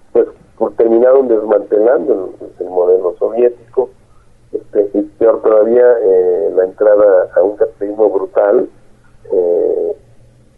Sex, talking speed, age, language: male, 100 wpm, 50-69, Spanish